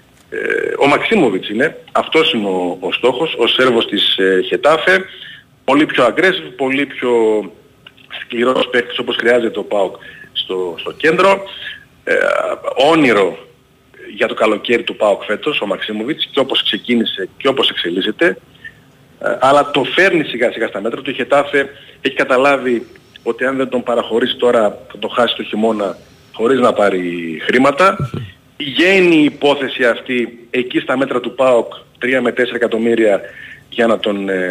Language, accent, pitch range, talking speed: Greek, native, 115-160 Hz, 150 wpm